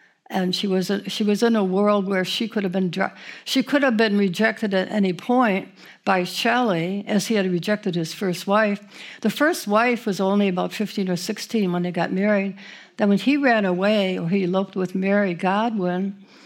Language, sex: English, female